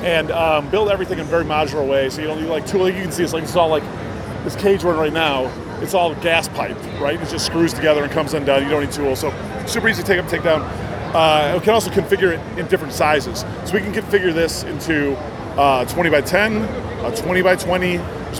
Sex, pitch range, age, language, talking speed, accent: male, 150-180 Hz, 30-49, English, 250 wpm, American